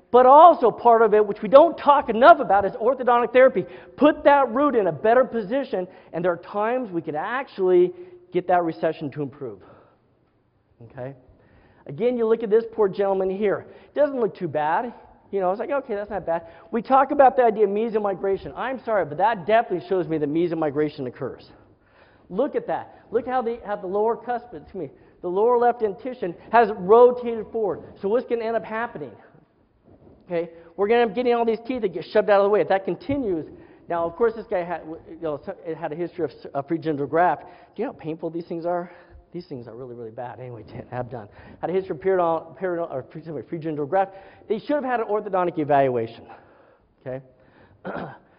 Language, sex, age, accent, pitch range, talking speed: English, male, 40-59, American, 165-230 Hz, 210 wpm